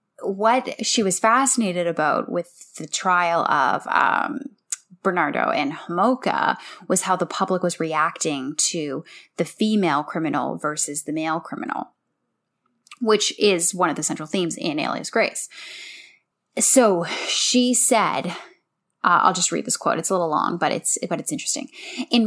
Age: 10-29